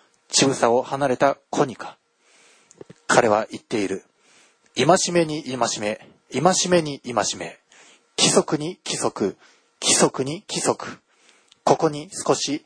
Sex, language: male, Japanese